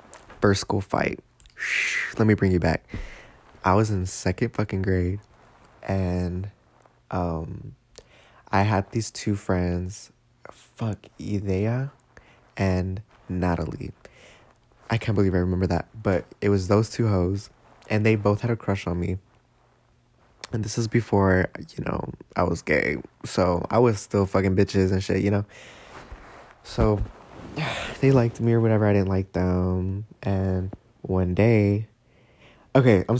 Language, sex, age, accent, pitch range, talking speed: English, male, 20-39, American, 95-115 Hz, 145 wpm